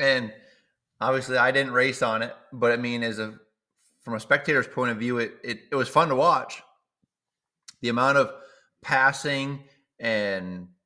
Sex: male